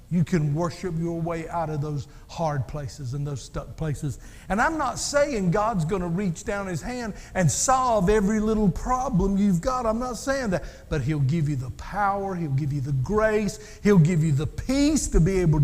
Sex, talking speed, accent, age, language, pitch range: male, 205 wpm, American, 50-69, English, 140-180 Hz